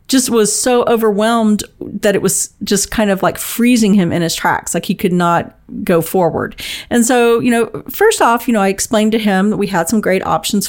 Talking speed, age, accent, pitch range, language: 225 wpm, 40-59, American, 190-240 Hz, English